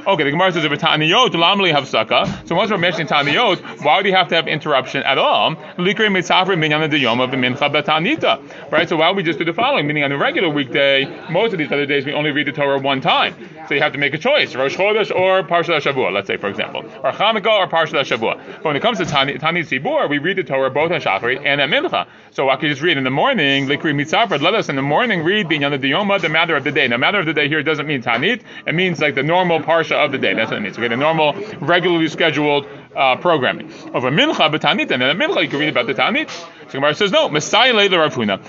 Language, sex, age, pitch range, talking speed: English, male, 30-49, 145-185 Hz, 255 wpm